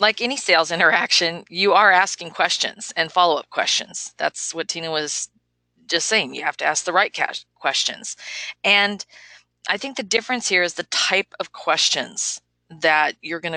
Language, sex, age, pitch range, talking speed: English, female, 40-59, 160-195 Hz, 170 wpm